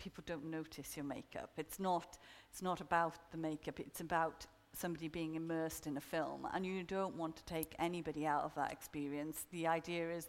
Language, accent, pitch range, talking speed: English, British, 160-175 Hz, 200 wpm